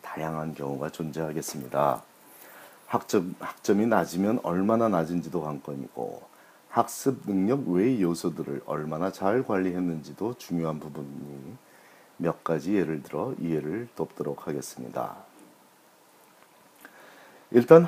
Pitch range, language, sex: 80-110 Hz, Korean, male